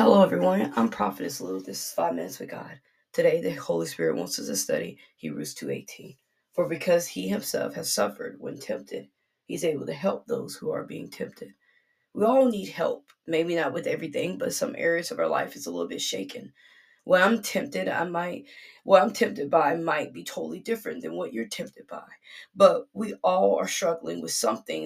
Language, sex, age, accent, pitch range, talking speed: English, female, 20-39, American, 165-260 Hz, 200 wpm